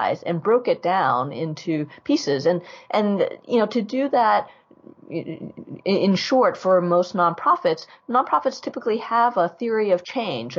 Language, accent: English, American